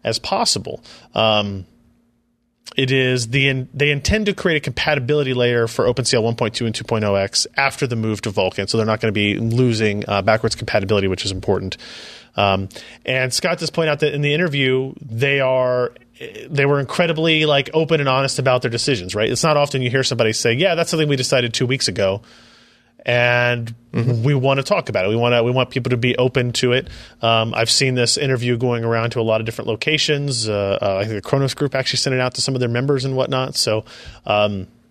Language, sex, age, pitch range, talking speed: English, male, 30-49, 110-140 Hz, 215 wpm